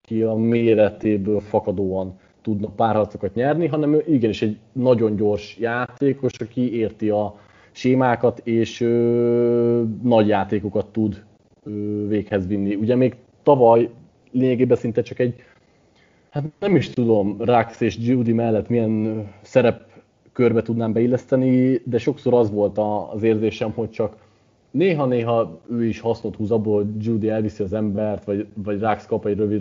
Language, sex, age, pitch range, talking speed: Hungarian, male, 30-49, 105-125 Hz, 140 wpm